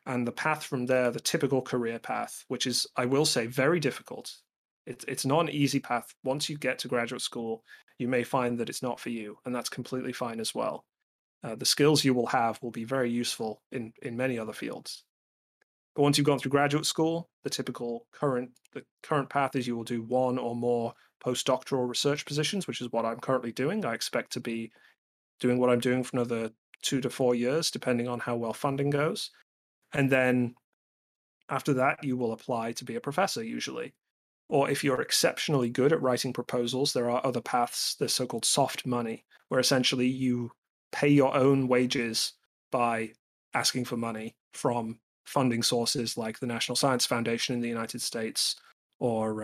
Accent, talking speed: British, 190 wpm